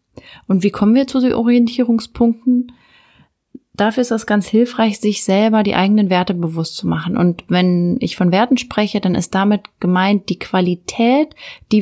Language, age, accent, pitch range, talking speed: German, 30-49, German, 175-220 Hz, 170 wpm